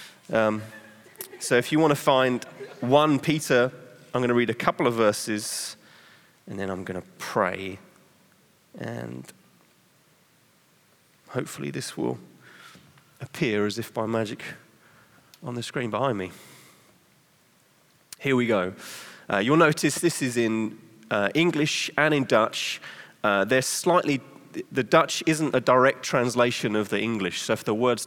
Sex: male